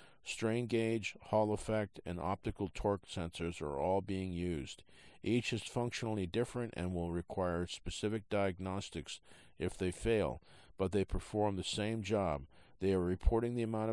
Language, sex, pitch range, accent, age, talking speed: English, male, 90-105 Hz, American, 50-69, 150 wpm